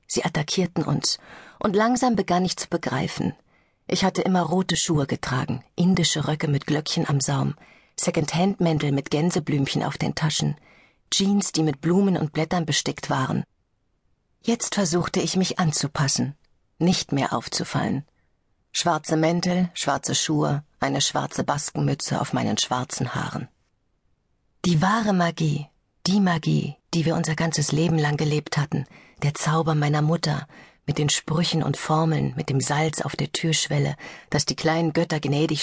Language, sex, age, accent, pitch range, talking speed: German, female, 40-59, German, 150-175 Hz, 145 wpm